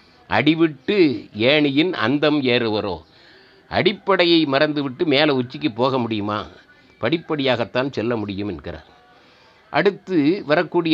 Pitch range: 125-185 Hz